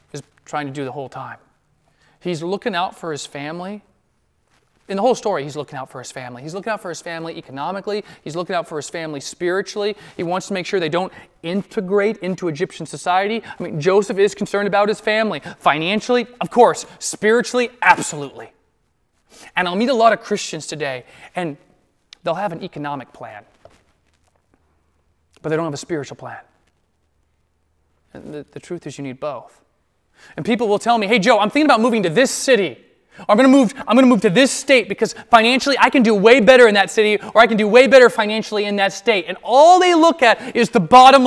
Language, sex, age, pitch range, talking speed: English, male, 30-49, 165-255 Hz, 200 wpm